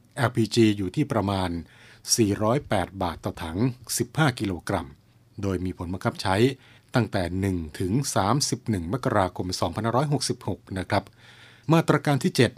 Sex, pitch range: male, 95-120 Hz